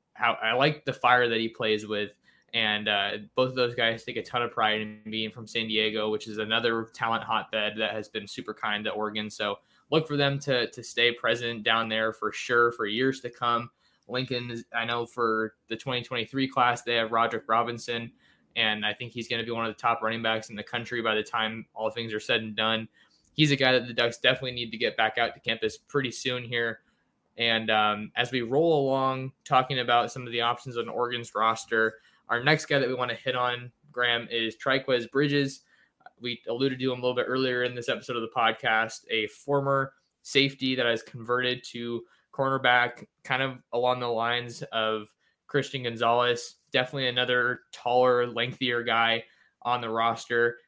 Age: 20-39